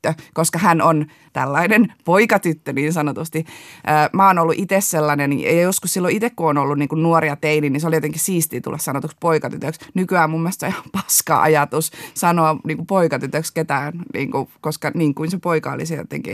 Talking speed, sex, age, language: 190 wpm, female, 20-39, Finnish